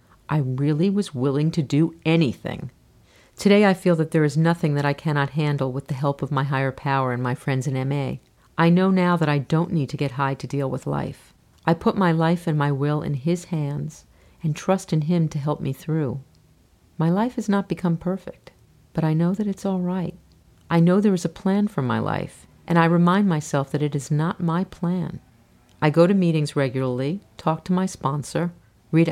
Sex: female